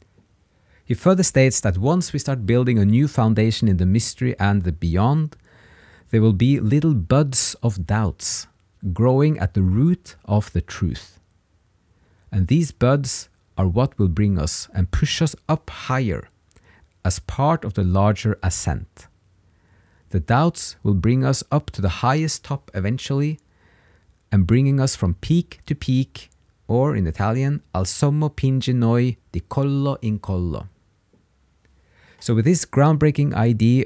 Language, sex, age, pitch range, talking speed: English, male, 50-69, 95-130 Hz, 150 wpm